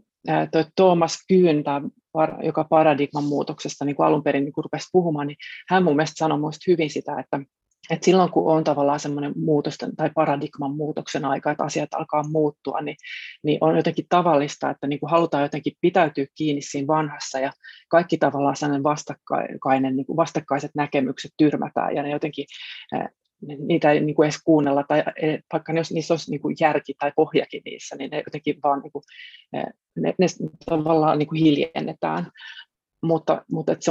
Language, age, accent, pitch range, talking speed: Finnish, 30-49, native, 145-160 Hz, 155 wpm